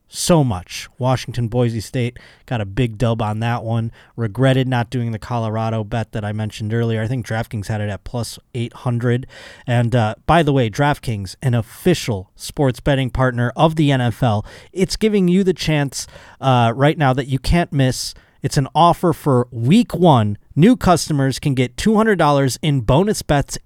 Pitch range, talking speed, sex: 120-165 Hz, 180 wpm, male